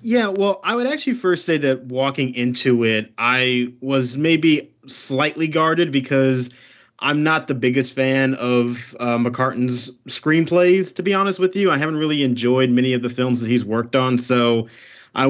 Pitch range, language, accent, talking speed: 125-160 Hz, English, American, 175 wpm